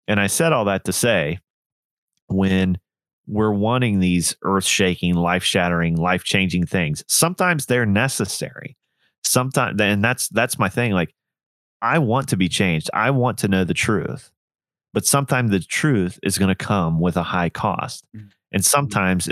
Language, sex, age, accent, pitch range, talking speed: English, male, 30-49, American, 85-105 Hz, 155 wpm